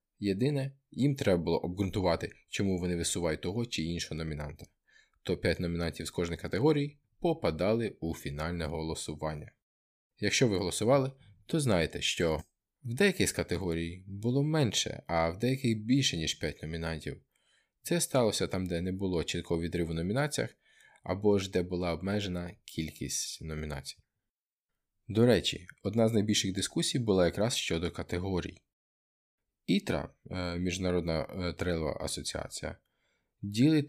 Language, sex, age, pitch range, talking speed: Ukrainian, male, 20-39, 85-115 Hz, 130 wpm